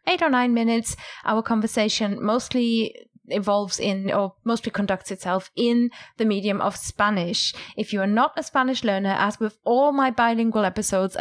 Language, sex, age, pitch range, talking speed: English, female, 20-39, 200-250 Hz, 165 wpm